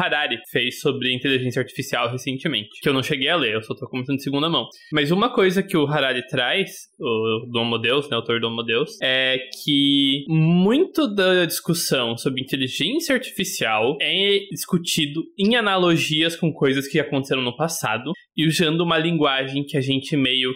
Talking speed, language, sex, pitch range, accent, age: 165 wpm, Portuguese, male, 135-185 Hz, Brazilian, 20-39